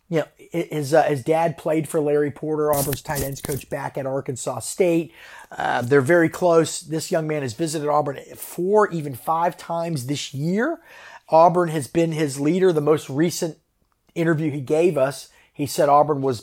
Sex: male